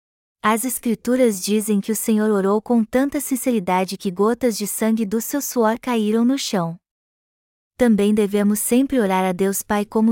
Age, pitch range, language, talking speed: 20-39, 195-235 Hz, Portuguese, 165 wpm